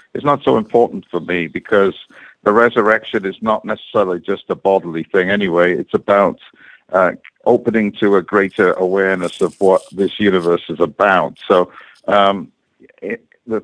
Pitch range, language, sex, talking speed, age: 95-110 Hz, English, male, 150 wpm, 60-79